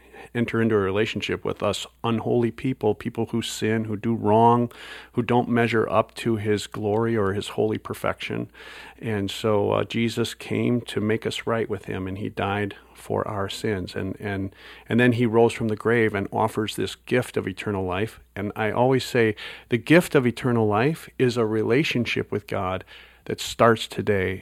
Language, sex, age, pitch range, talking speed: English, male, 40-59, 100-120 Hz, 185 wpm